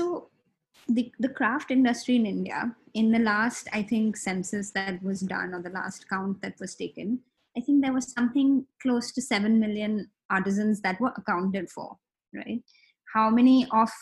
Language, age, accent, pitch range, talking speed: English, 20-39, Indian, 190-240 Hz, 175 wpm